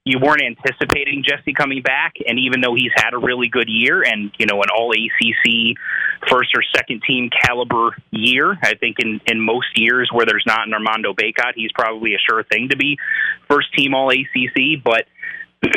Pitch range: 115-135 Hz